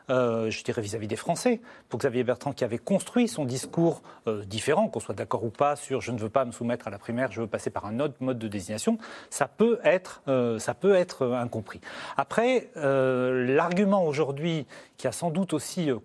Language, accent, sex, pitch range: French, French, male, 130-195 Hz